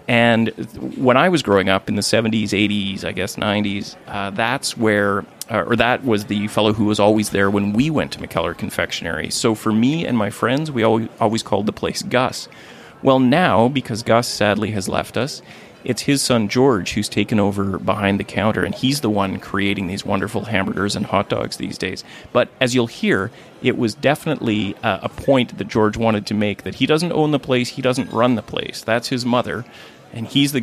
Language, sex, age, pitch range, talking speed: English, male, 30-49, 105-125 Hz, 210 wpm